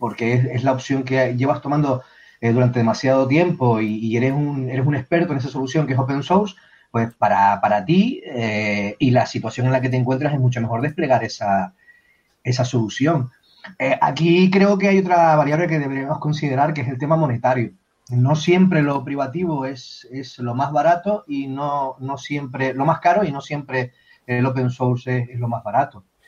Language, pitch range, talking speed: Spanish, 115-145 Hz, 200 wpm